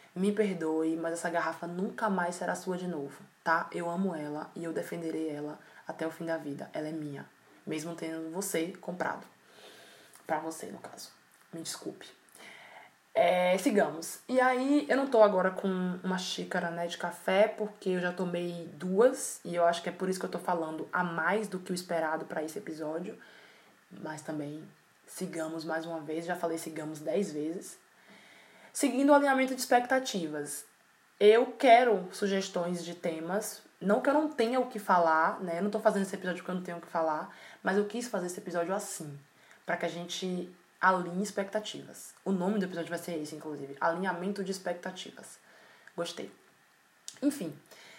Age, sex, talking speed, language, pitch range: 20-39, female, 180 wpm, Portuguese, 165-210 Hz